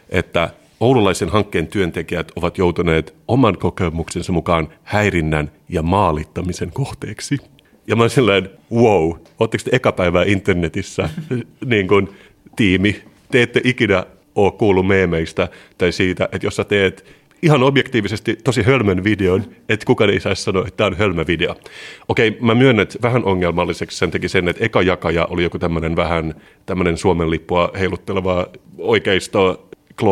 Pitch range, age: 85-105 Hz, 30-49